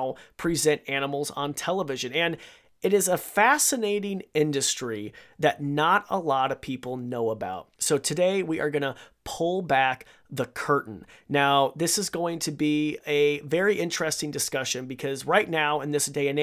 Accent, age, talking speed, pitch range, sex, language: American, 30-49, 165 wpm, 140-180 Hz, male, English